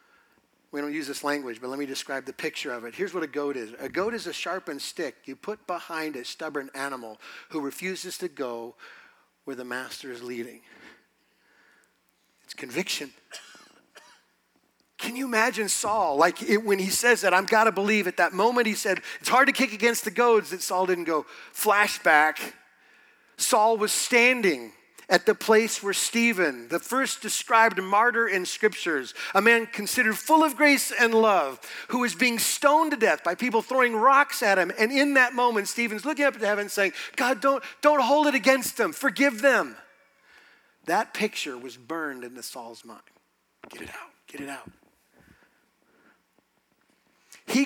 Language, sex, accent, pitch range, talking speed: English, male, American, 175-250 Hz, 170 wpm